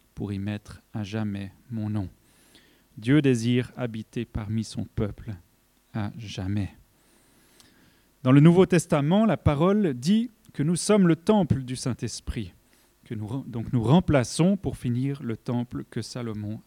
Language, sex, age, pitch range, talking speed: French, male, 30-49, 115-150 Hz, 145 wpm